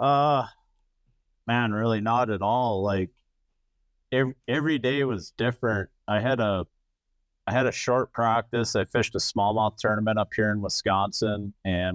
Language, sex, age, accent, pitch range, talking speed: English, male, 30-49, American, 85-110 Hz, 150 wpm